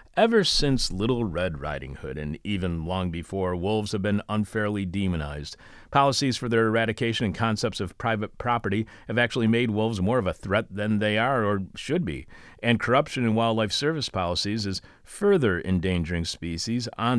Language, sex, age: English, male, 40-59